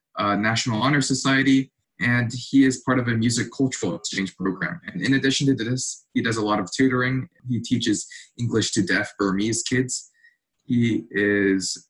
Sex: male